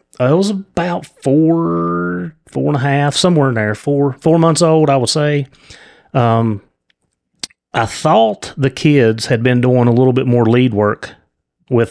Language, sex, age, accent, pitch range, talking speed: English, male, 30-49, American, 115-140 Hz, 165 wpm